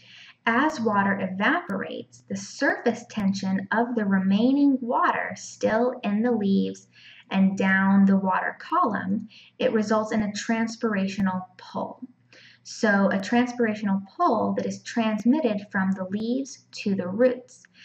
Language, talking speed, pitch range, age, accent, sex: English, 130 wpm, 195-240 Hz, 10-29, American, female